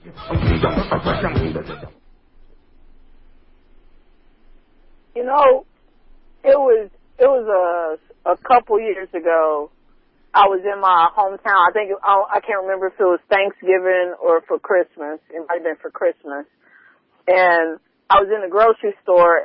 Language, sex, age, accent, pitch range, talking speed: English, female, 40-59, American, 170-220 Hz, 125 wpm